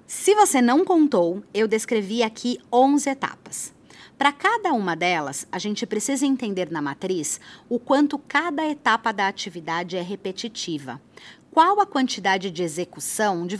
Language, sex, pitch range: Portuguese, female, 180-250 Hz